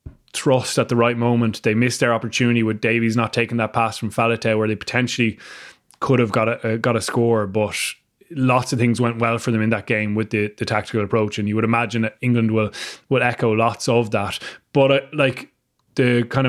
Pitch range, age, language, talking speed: 110-125 Hz, 20-39, English, 220 wpm